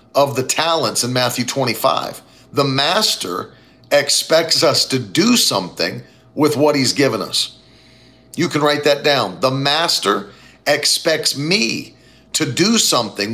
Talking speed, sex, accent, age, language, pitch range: 135 wpm, male, American, 50-69, English, 125-160 Hz